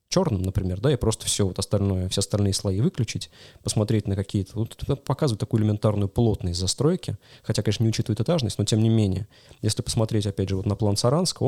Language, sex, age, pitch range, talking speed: Russian, male, 20-39, 100-120 Hz, 200 wpm